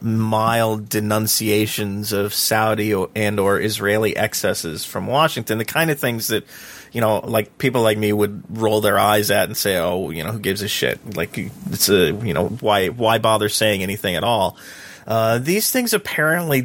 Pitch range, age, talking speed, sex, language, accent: 105-140 Hz, 30-49, 185 wpm, male, English, American